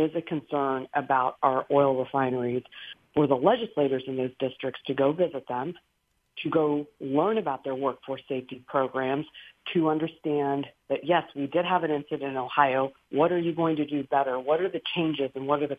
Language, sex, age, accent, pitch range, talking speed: English, female, 50-69, American, 140-170 Hz, 195 wpm